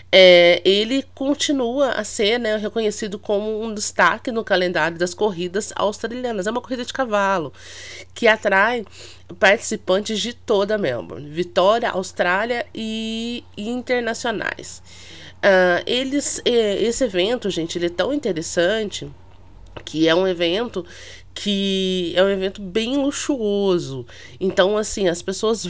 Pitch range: 160-225 Hz